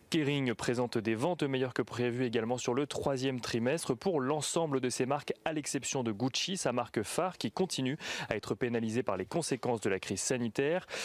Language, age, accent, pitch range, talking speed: French, 30-49, French, 120-150 Hz, 195 wpm